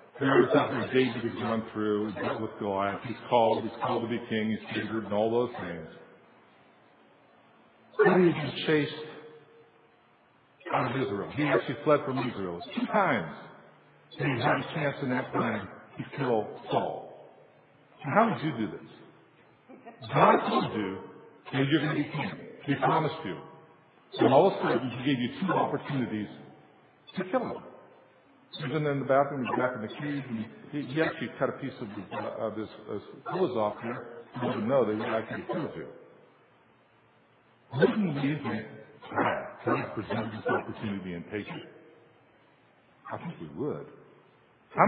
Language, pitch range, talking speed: English, 110-155 Hz, 180 wpm